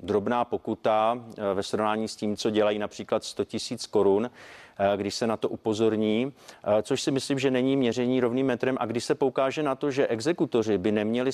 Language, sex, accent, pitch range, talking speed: Czech, male, native, 110-135 Hz, 185 wpm